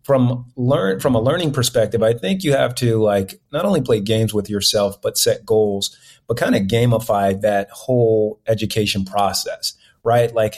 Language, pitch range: English, 110-135 Hz